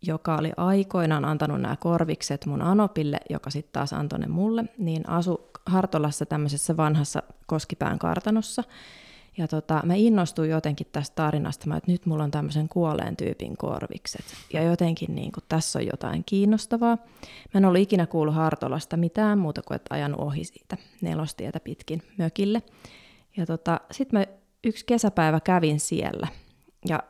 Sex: female